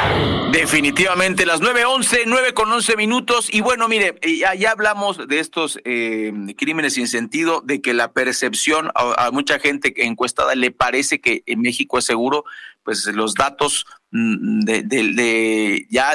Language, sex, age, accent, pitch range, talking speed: Spanish, male, 40-59, Mexican, 125-195 Hz, 160 wpm